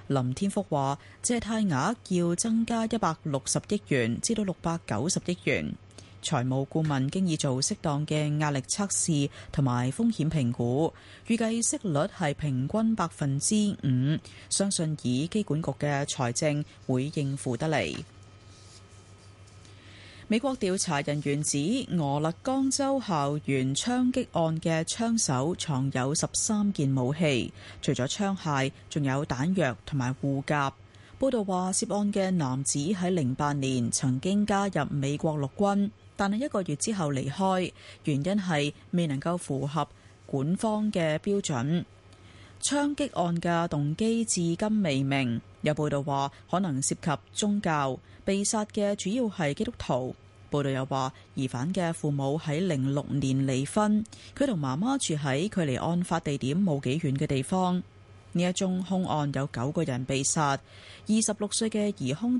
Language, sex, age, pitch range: Chinese, female, 30-49, 130-190 Hz